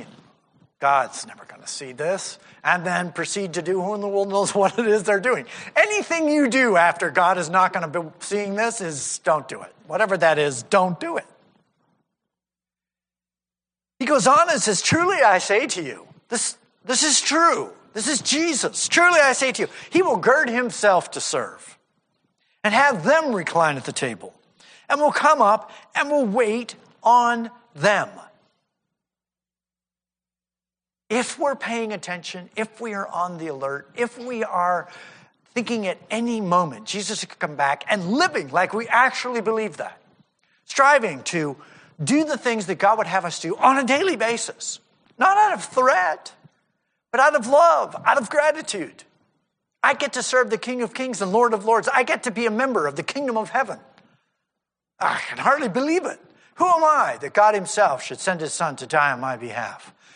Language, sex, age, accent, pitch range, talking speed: English, male, 50-69, American, 175-260 Hz, 185 wpm